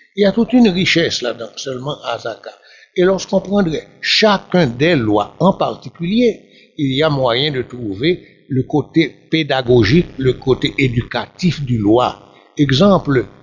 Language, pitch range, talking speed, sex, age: French, 125-190 Hz, 150 wpm, male, 60-79